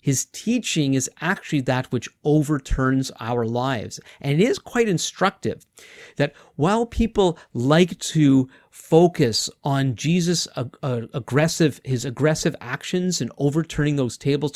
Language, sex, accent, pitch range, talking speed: English, male, American, 125-165 Hz, 125 wpm